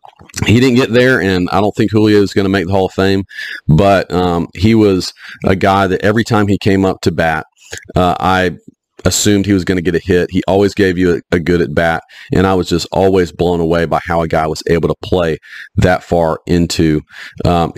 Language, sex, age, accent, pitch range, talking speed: English, male, 40-59, American, 90-105 Hz, 235 wpm